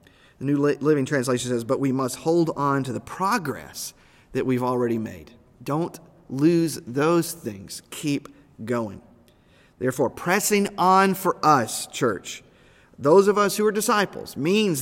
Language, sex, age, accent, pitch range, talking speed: English, male, 40-59, American, 125-165 Hz, 145 wpm